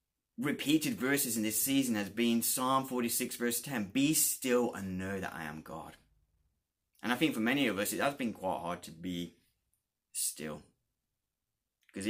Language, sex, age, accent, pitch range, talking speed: English, male, 20-39, British, 90-115 Hz, 180 wpm